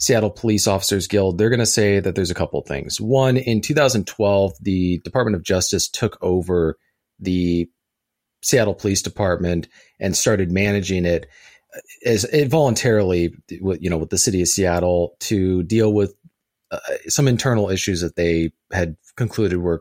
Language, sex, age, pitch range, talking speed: English, male, 40-59, 90-110 Hz, 160 wpm